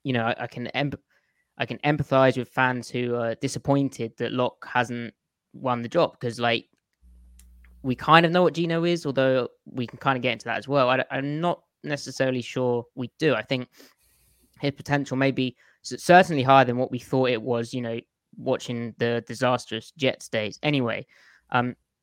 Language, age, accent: English, 20-39, British